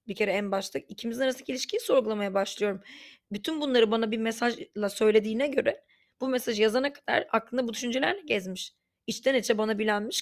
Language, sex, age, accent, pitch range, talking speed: Turkish, female, 30-49, native, 205-255 Hz, 165 wpm